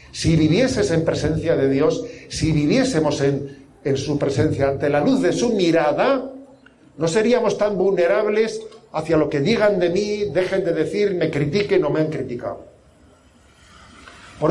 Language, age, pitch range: Spanish, 50-69, 140-185 Hz